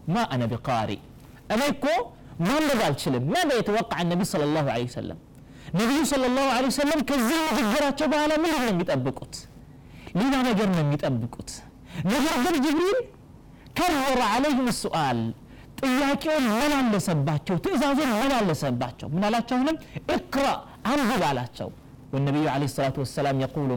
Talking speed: 135 wpm